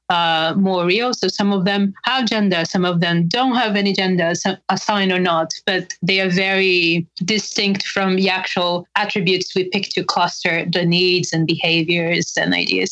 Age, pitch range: 30-49, 175-200 Hz